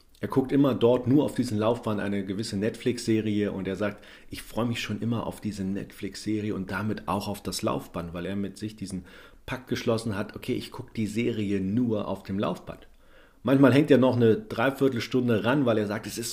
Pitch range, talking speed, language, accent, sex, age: 95-120 Hz, 210 wpm, German, German, male, 40-59